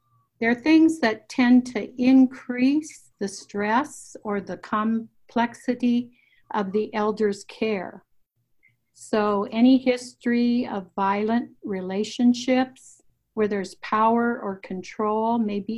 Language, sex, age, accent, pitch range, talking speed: English, female, 50-69, American, 210-245 Hz, 105 wpm